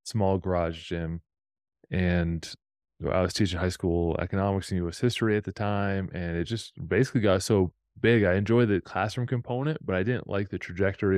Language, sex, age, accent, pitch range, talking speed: English, male, 20-39, American, 85-100 Hz, 180 wpm